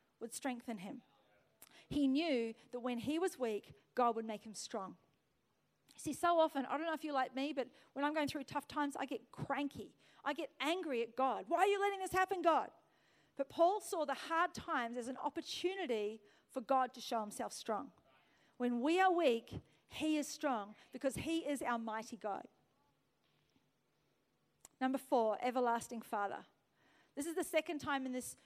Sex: female